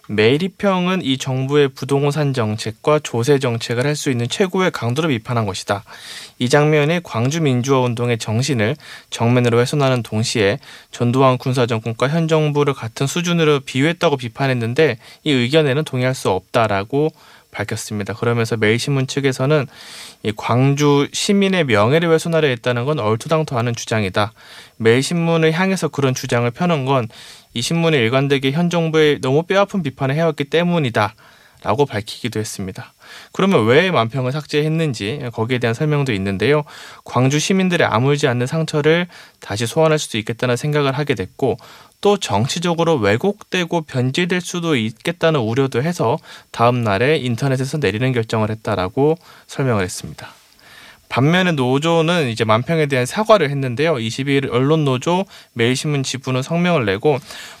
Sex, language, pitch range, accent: male, Korean, 120-160 Hz, native